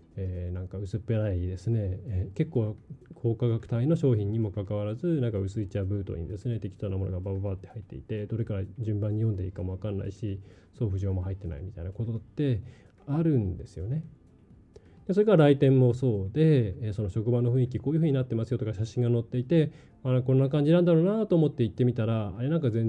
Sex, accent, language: male, native, Japanese